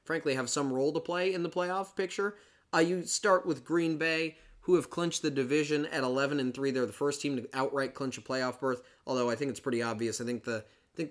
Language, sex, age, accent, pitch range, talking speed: English, male, 20-39, American, 125-160 Hz, 250 wpm